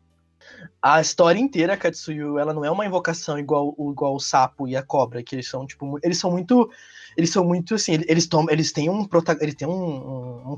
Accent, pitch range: Brazilian, 140-180 Hz